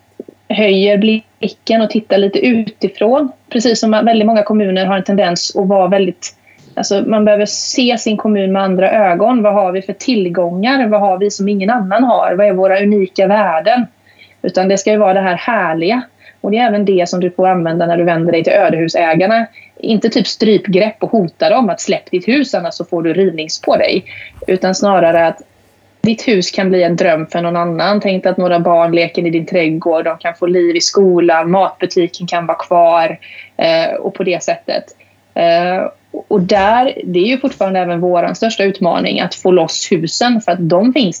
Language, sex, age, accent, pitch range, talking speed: Swedish, female, 20-39, native, 170-215 Hz, 200 wpm